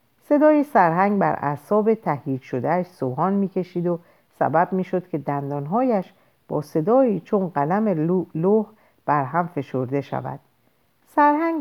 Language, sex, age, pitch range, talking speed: Persian, female, 50-69, 140-195 Hz, 135 wpm